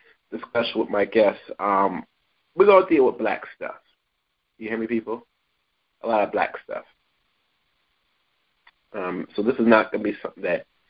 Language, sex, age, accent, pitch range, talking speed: English, male, 30-49, American, 110-135 Hz, 170 wpm